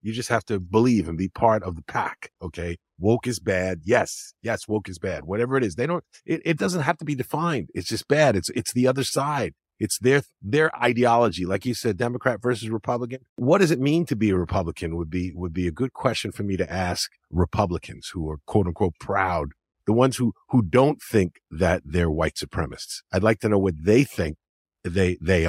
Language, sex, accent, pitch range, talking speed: English, male, American, 85-120 Hz, 220 wpm